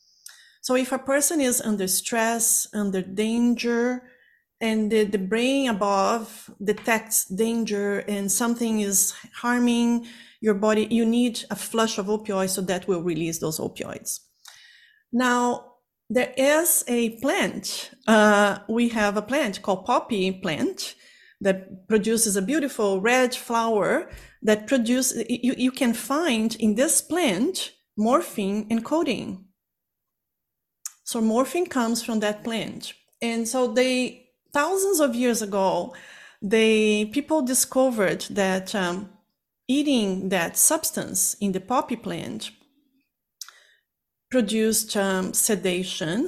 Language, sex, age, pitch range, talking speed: English, female, 30-49, 205-255 Hz, 120 wpm